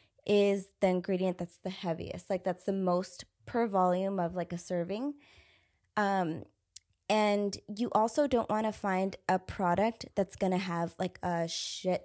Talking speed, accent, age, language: 165 wpm, American, 20-39, English